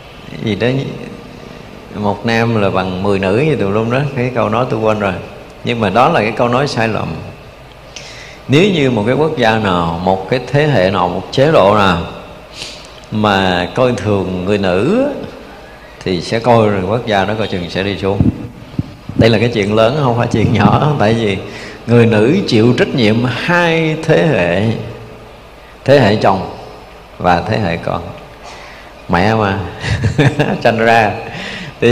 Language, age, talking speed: Vietnamese, 60-79, 170 wpm